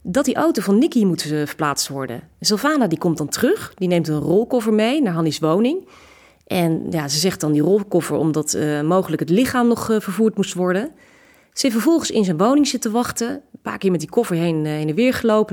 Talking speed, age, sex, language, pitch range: 220 wpm, 30-49, female, Dutch, 160-230 Hz